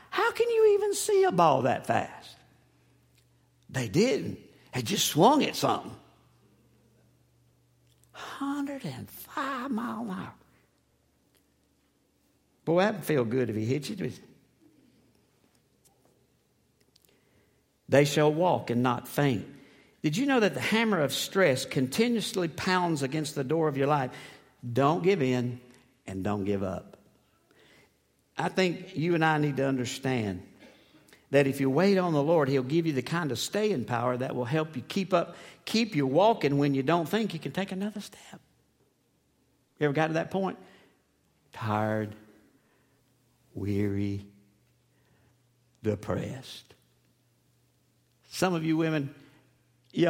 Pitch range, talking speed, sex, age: 120-170 Hz, 135 wpm, male, 60-79